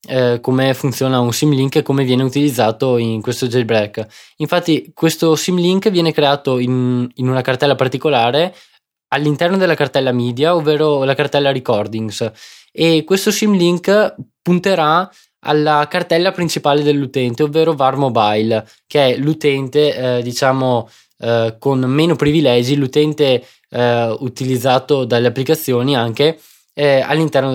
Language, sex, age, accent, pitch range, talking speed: Italian, male, 20-39, native, 125-160 Hz, 120 wpm